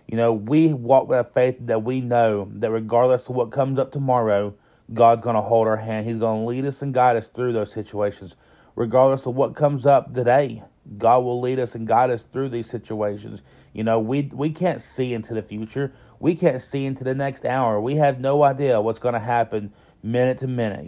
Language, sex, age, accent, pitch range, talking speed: English, male, 30-49, American, 110-135 Hz, 220 wpm